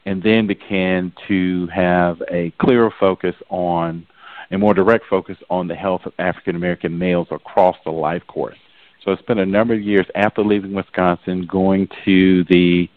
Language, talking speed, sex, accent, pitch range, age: English, 170 wpm, male, American, 90-100 Hz, 50-69